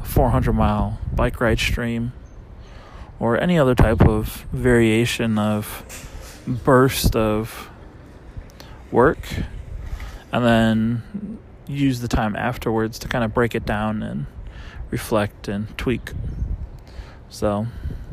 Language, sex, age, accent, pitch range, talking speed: English, male, 20-39, American, 105-125 Hz, 105 wpm